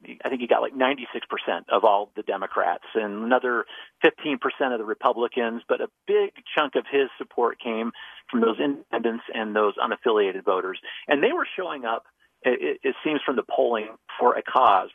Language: English